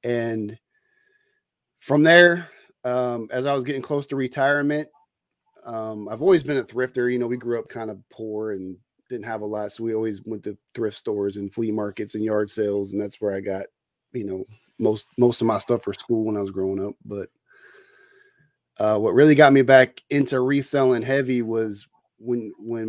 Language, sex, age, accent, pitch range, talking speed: English, male, 30-49, American, 110-135 Hz, 195 wpm